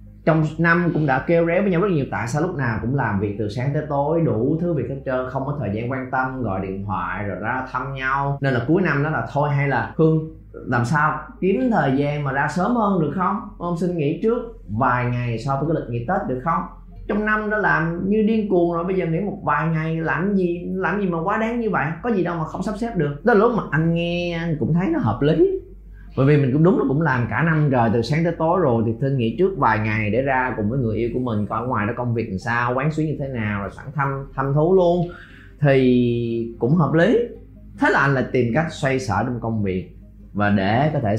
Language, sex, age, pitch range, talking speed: Vietnamese, male, 20-39, 115-165 Hz, 265 wpm